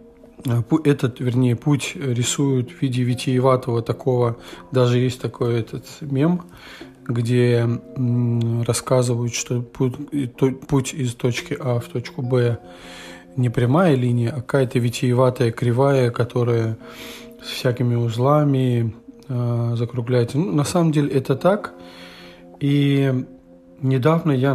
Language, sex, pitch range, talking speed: Russian, male, 120-145 Hz, 110 wpm